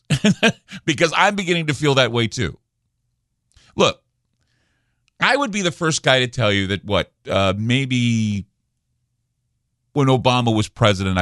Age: 50-69